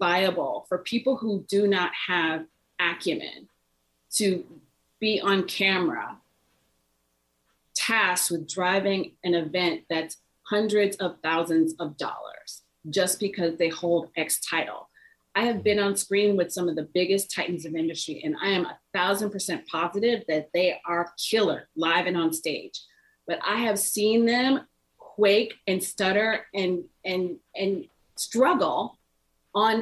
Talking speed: 140 wpm